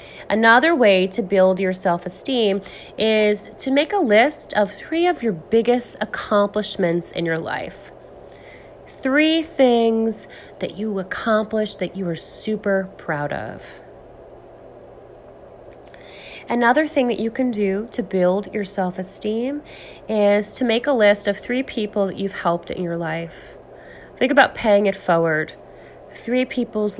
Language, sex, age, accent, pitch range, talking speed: English, female, 30-49, American, 185-240 Hz, 140 wpm